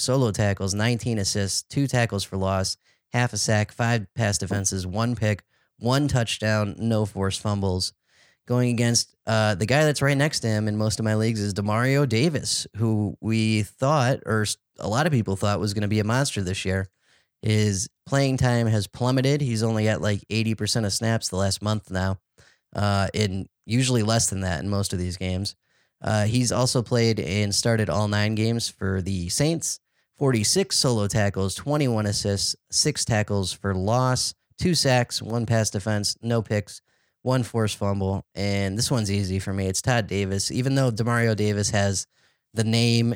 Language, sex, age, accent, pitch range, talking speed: English, male, 30-49, American, 100-120 Hz, 180 wpm